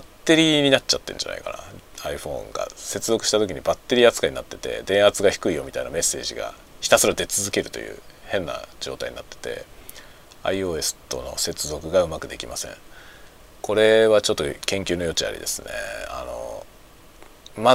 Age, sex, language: 40-59, male, Japanese